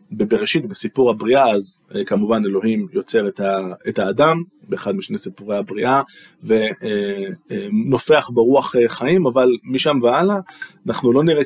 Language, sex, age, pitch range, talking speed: Hebrew, male, 20-39, 115-165 Hz, 115 wpm